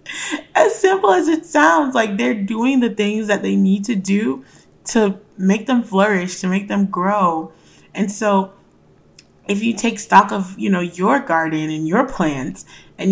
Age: 20-39